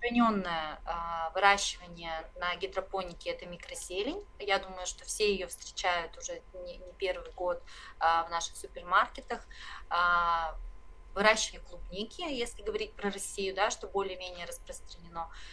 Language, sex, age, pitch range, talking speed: Russian, female, 30-49, 170-215 Hz, 105 wpm